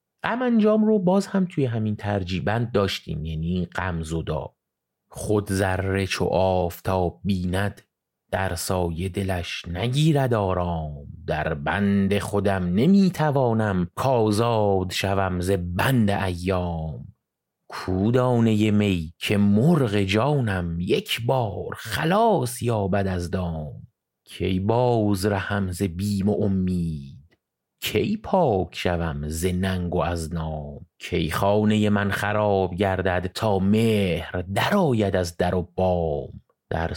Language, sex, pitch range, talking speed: Persian, male, 85-105 Hz, 110 wpm